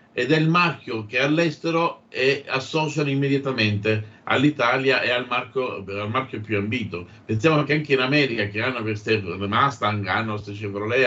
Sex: male